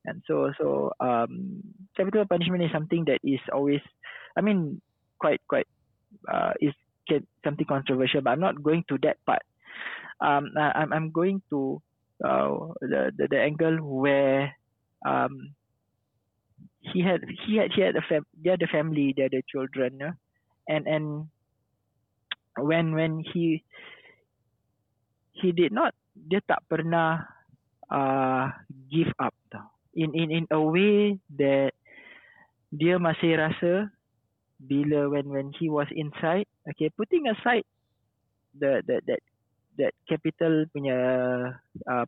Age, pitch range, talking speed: 20-39, 135-170 Hz, 135 wpm